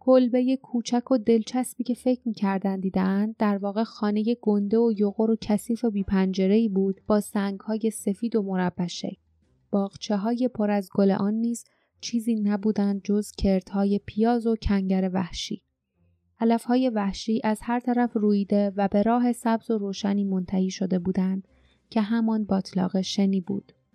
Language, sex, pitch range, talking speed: Persian, female, 195-230 Hz, 150 wpm